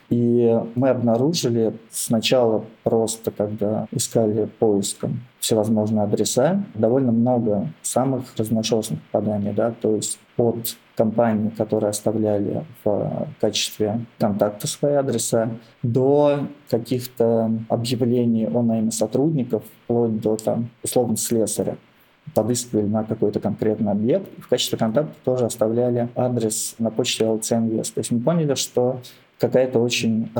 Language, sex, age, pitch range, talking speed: Russian, male, 20-39, 110-125 Hz, 115 wpm